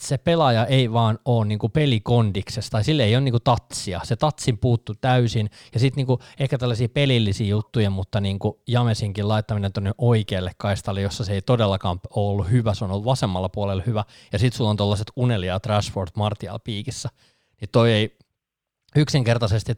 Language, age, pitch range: Finnish, 20-39, 100-120 Hz